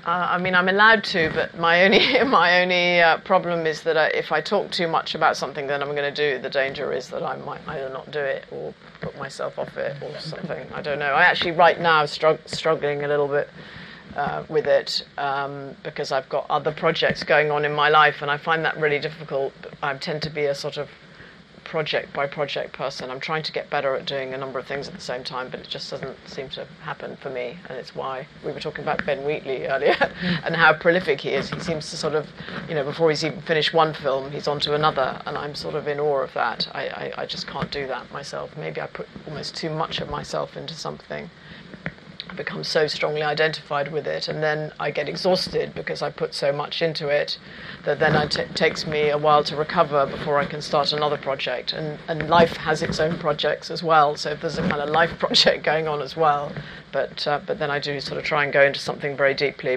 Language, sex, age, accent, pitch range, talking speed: English, female, 40-59, British, 145-165 Hz, 245 wpm